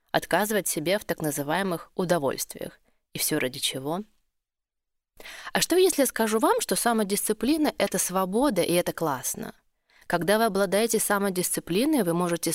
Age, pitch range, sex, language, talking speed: 20-39, 165-230 Hz, female, Russian, 145 wpm